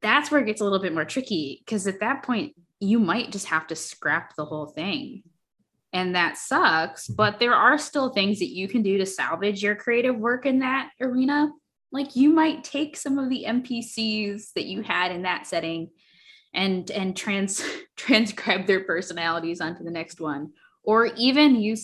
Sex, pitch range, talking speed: female, 165-235 Hz, 190 wpm